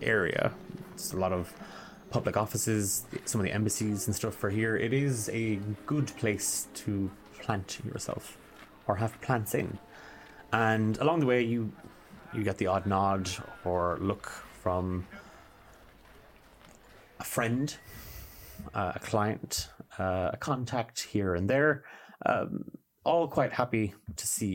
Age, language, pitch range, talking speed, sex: 30-49, English, 95-130 Hz, 140 wpm, male